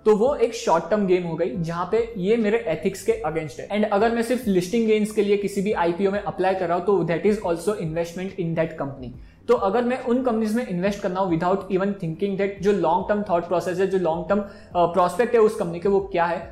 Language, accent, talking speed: Hindi, native, 250 wpm